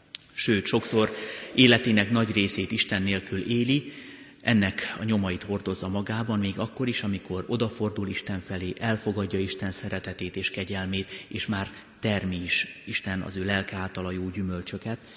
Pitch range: 95-110 Hz